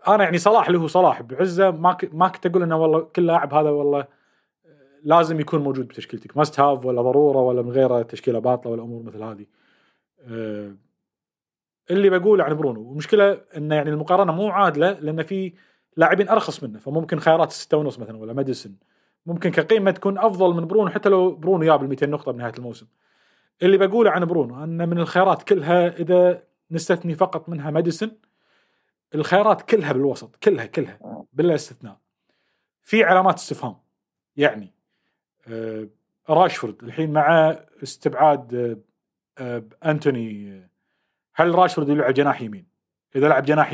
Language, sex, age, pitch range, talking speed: Arabic, male, 30-49, 130-180 Hz, 145 wpm